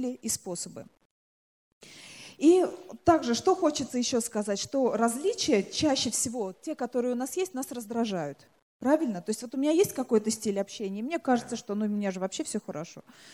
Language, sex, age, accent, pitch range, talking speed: Russian, female, 30-49, native, 215-280 Hz, 180 wpm